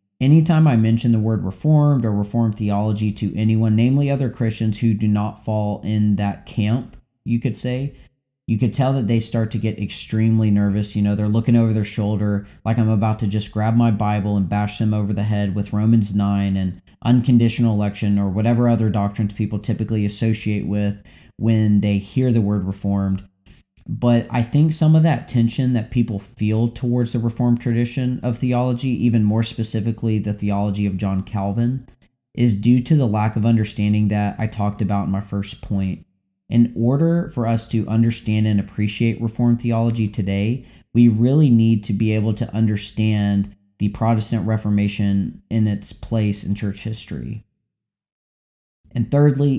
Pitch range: 100-115 Hz